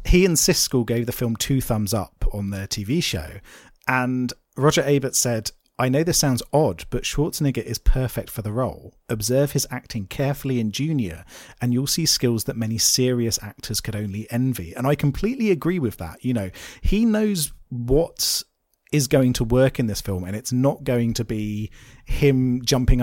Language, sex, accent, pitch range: English, male, British, 110-135 Hz